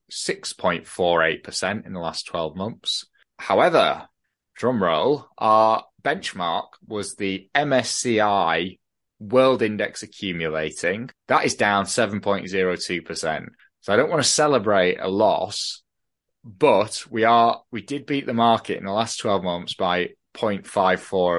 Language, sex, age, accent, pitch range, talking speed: English, male, 20-39, British, 90-115 Hz, 125 wpm